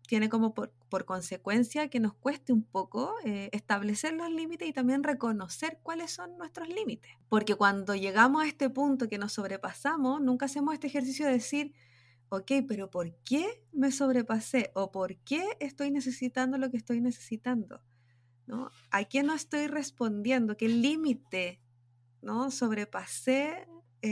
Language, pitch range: Spanish, 200-270 Hz